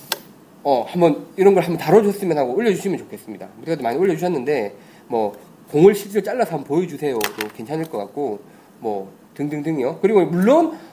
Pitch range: 145-210 Hz